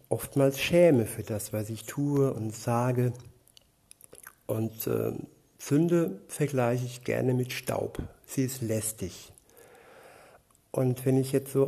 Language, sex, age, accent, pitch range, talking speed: German, male, 60-79, German, 115-135 Hz, 130 wpm